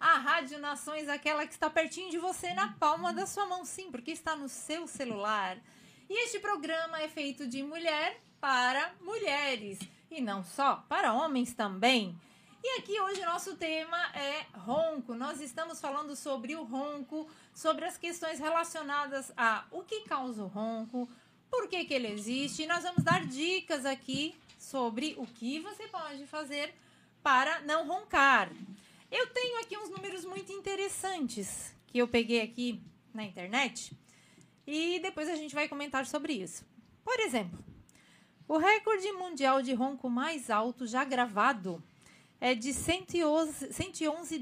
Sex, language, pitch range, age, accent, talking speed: female, Portuguese, 250-335 Hz, 30-49, Brazilian, 155 wpm